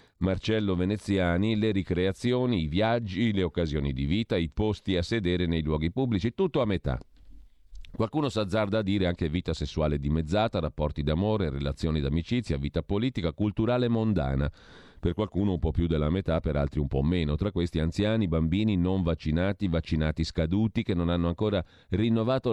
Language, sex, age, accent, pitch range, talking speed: Italian, male, 40-59, native, 80-110 Hz, 165 wpm